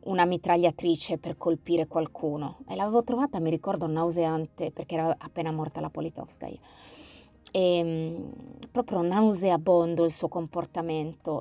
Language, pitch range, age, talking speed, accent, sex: Italian, 160-195 Hz, 30-49, 120 wpm, native, female